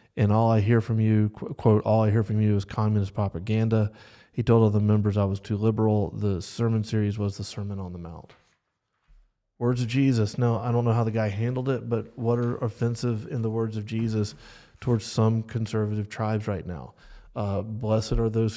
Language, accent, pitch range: English, American, 105-115 Hz